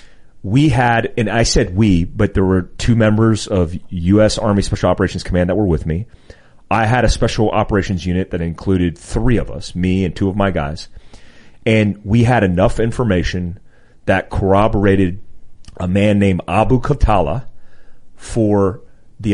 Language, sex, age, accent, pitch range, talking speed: English, male, 30-49, American, 90-110 Hz, 160 wpm